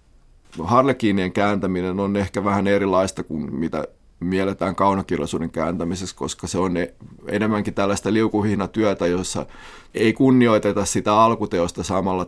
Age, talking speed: 30-49, 110 wpm